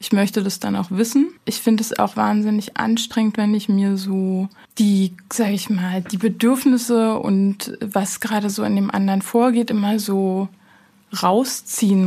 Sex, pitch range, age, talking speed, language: female, 195-230 Hz, 20-39, 165 wpm, German